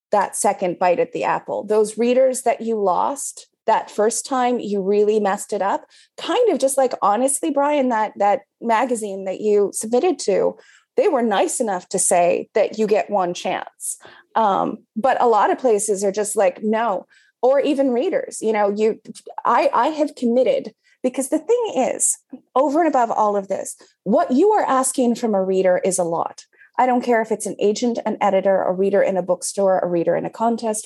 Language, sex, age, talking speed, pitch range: English, female, 30-49, 200 wpm, 205-270 Hz